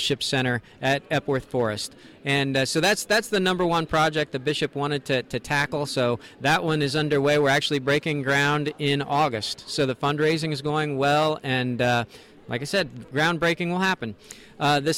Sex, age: male, 40-59